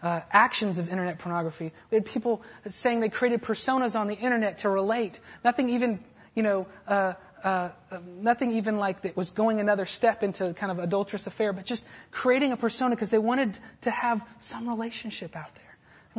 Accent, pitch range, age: American, 190-240 Hz, 30-49